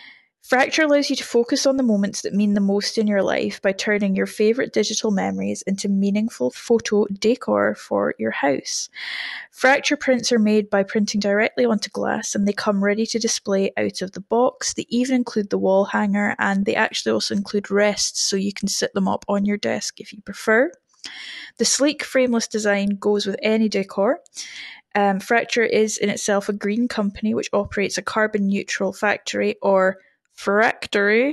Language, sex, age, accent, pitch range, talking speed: English, female, 10-29, British, 195-235 Hz, 180 wpm